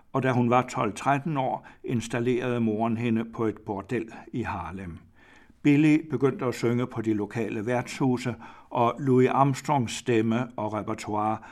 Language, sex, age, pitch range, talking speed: Danish, male, 60-79, 110-125 Hz, 145 wpm